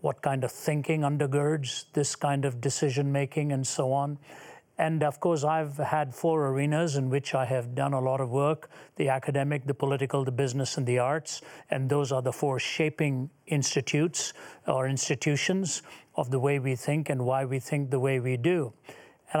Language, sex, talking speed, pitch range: English, male, 185 wpm, 135-155 Hz